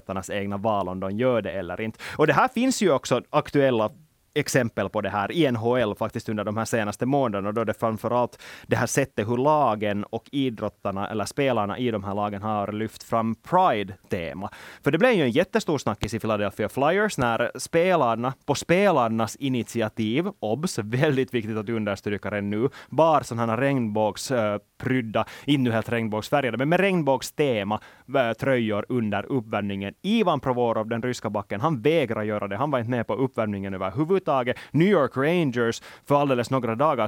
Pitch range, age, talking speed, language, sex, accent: 110-140 Hz, 20-39, 175 wpm, Swedish, male, Finnish